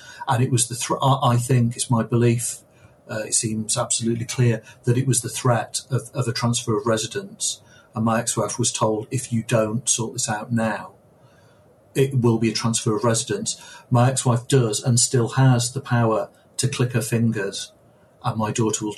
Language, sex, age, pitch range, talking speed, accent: English, male, 40-59, 110-125 Hz, 195 wpm, British